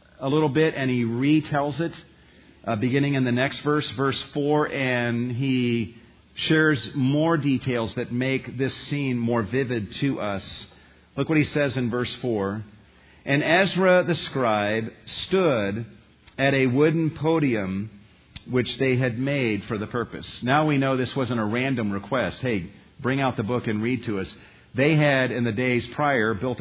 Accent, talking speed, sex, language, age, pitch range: American, 170 wpm, male, English, 50-69, 120-155 Hz